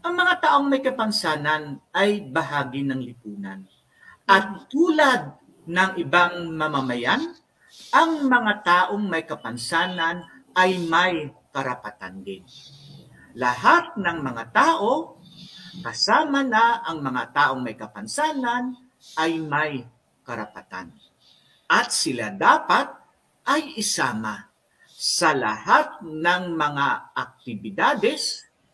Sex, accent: male, native